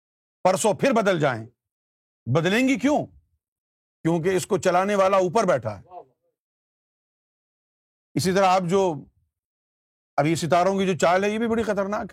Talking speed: 150 wpm